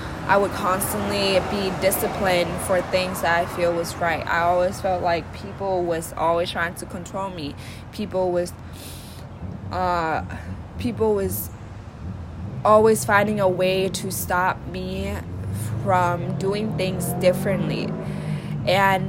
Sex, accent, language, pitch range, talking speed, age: female, American, English, 155-195 Hz, 120 wpm, 20-39